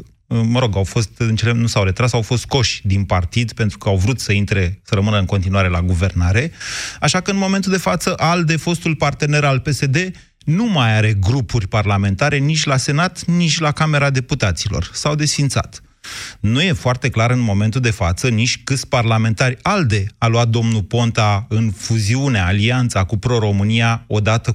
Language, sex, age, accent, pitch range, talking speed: Romanian, male, 30-49, native, 105-145 Hz, 180 wpm